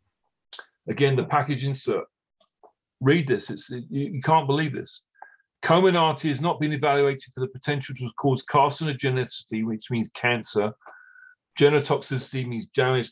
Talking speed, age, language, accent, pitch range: 135 wpm, 40-59, English, British, 130-165 Hz